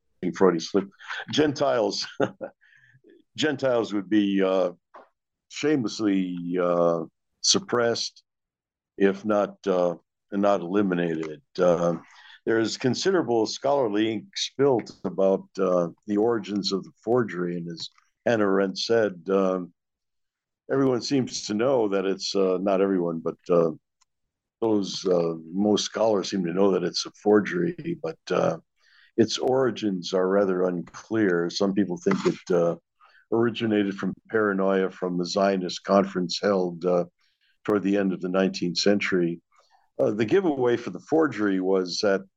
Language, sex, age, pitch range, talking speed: English, male, 60-79, 90-105 Hz, 135 wpm